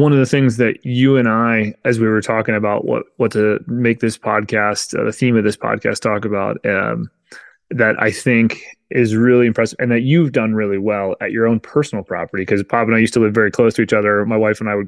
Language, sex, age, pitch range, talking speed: English, male, 20-39, 105-130 Hz, 250 wpm